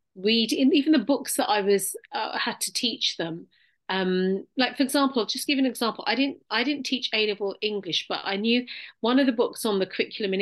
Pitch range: 190-255 Hz